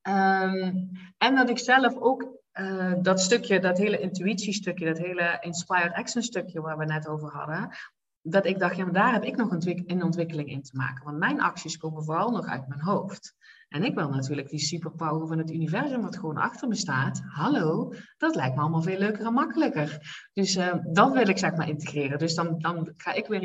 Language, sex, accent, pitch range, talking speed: Dutch, female, Dutch, 155-195 Hz, 215 wpm